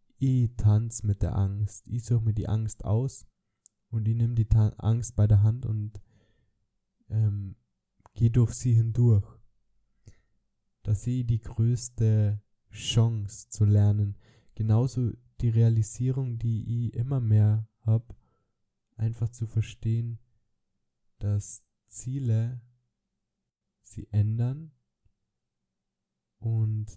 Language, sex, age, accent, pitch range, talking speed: German, male, 10-29, German, 105-115 Hz, 110 wpm